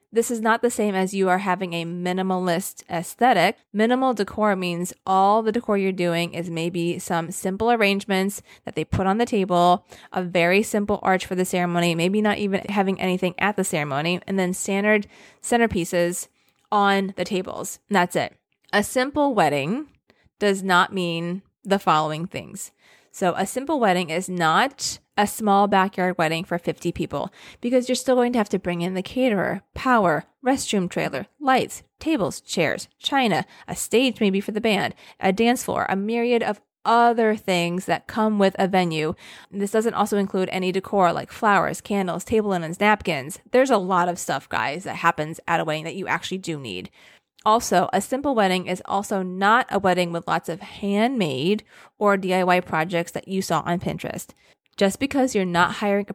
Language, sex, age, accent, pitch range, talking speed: English, female, 20-39, American, 180-220 Hz, 180 wpm